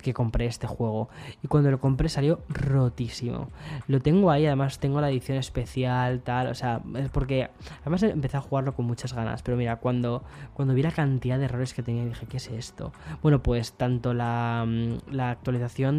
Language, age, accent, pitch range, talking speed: Spanish, 10-29, Spanish, 120-135 Hz, 190 wpm